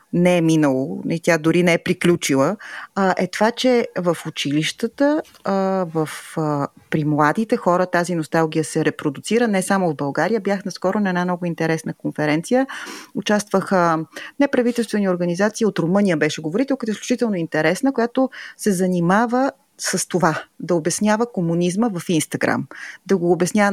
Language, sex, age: Bulgarian, female, 30-49